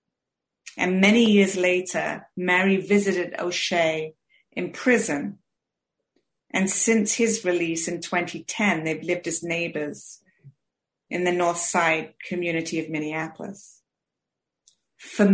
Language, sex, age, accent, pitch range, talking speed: English, female, 40-59, British, 165-195 Hz, 105 wpm